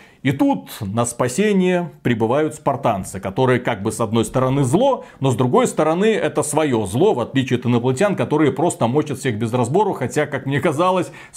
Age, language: 30-49, Russian